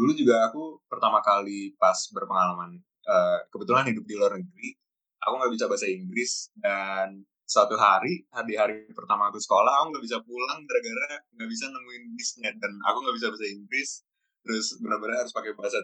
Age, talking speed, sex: 20-39, 170 wpm, male